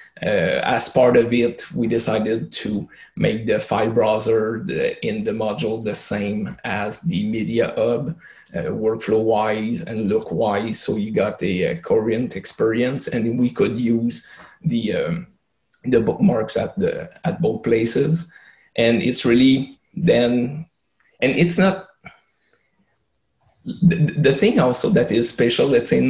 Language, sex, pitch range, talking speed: English, male, 115-165 Hz, 150 wpm